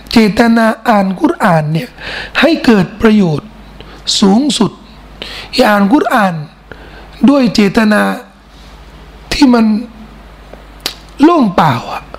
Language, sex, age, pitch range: Thai, male, 60-79, 205-285 Hz